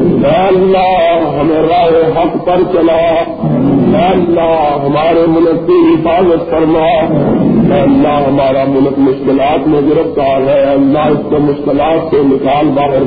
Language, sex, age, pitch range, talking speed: Urdu, male, 50-69, 140-175 Hz, 125 wpm